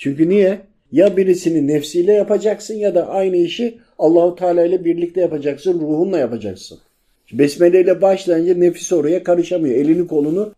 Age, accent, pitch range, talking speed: 50-69, native, 140-190 Hz, 140 wpm